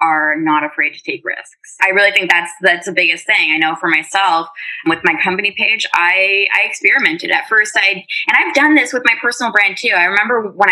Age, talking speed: 20-39, 225 wpm